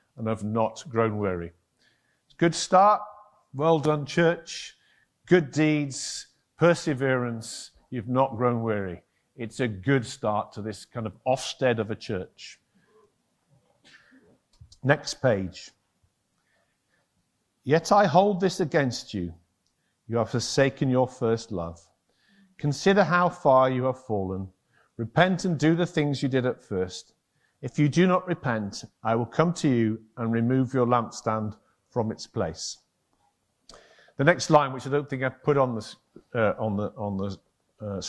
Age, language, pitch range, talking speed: 50-69, English, 110-160 Hz, 150 wpm